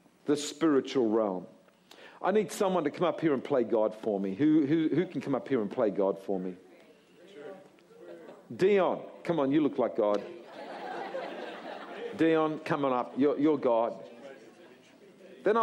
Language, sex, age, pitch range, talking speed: English, male, 50-69, 130-200 Hz, 160 wpm